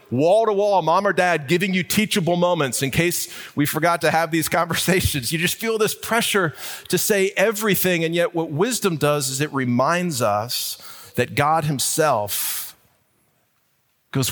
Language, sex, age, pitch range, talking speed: English, male, 40-59, 135-185 Hz, 155 wpm